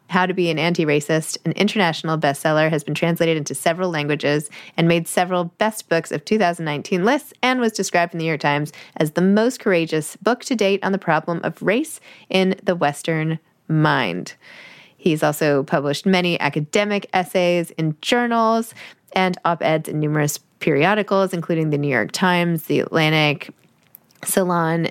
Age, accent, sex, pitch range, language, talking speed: 20-39, American, female, 155-195 Hz, English, 160 wpm